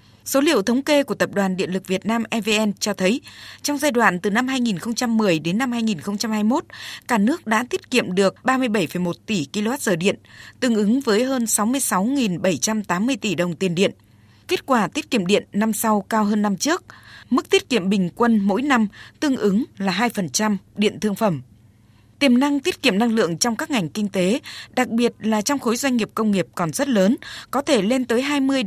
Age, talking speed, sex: 20-39, 200 wpm, female